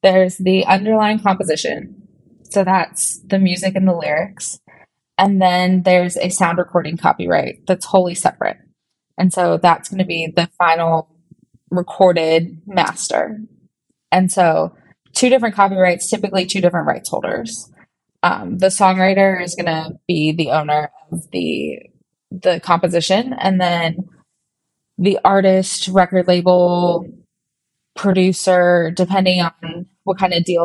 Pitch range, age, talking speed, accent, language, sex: 170-190 Hz, 20-39, 130 wpm, American, English, female